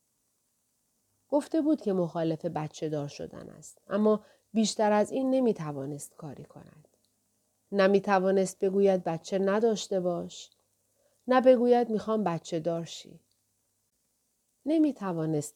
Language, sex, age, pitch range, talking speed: Persian, female, 40-59, 155-210 Hz, 105 wpm